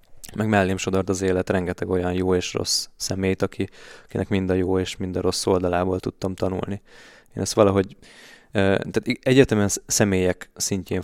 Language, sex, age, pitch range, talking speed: Hungarian, male, 20-39, 95-105 Hz, 160 wpm